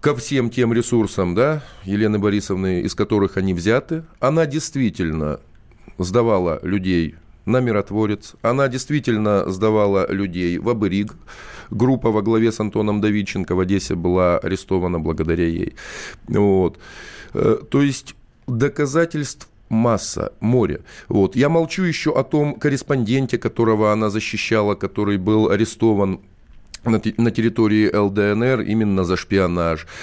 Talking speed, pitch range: 115 wpm, 100-135 Hz